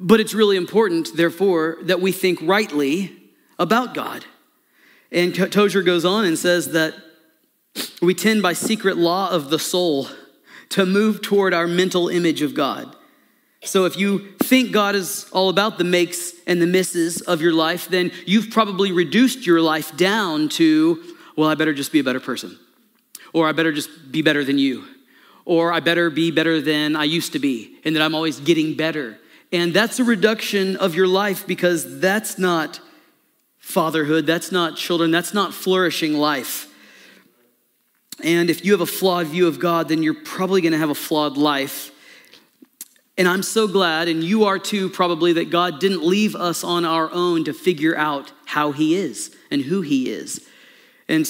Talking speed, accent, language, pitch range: 180 wpm, American, English, 160-200 Hz